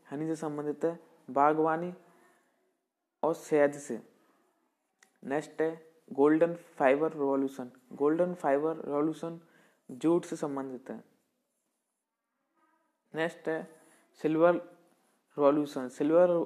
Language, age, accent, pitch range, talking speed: Hindi, 20-39, native, 145-165 Hz, 90 wpm